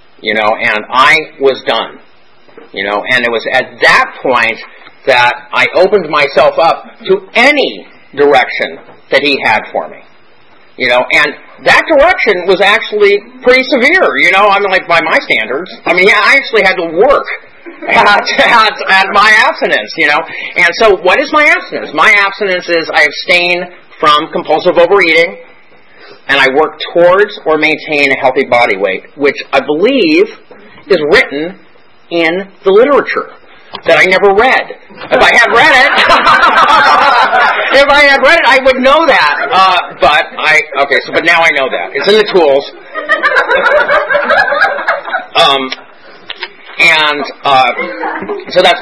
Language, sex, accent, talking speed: English, male, American, 160 wpm